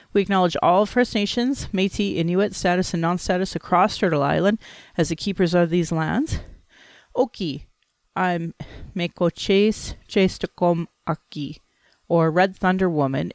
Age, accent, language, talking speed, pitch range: 30-49, American, English, 120 wpm, 155-190 Hz